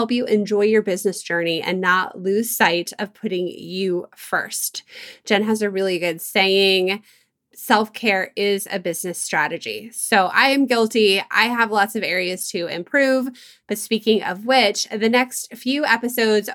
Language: English